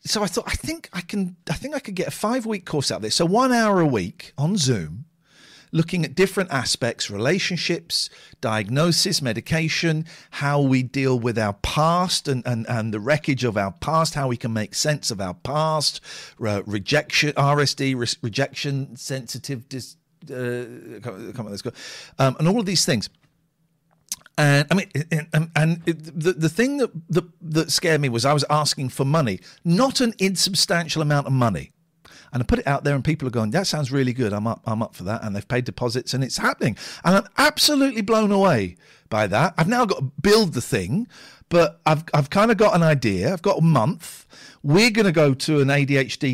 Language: English